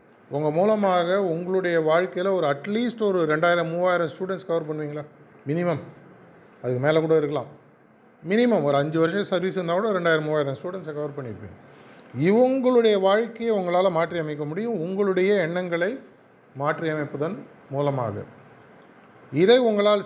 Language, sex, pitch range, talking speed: Tamil, male, 140-175 Hz, 125 wpm